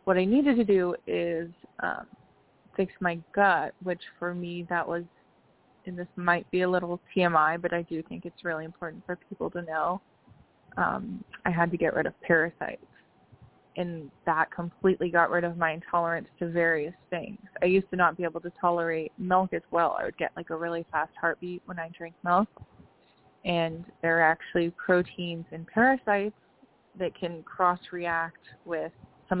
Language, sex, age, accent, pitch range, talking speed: English, female, 20-39, American, 165-185 Hz, 180 wpm